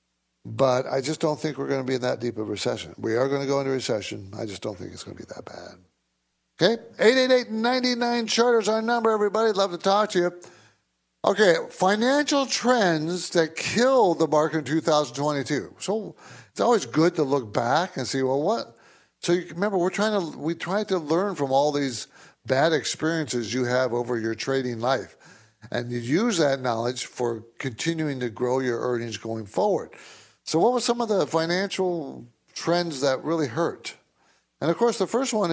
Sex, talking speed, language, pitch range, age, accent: male, 190 wpm, English, 125-190 Hz, 60-79, American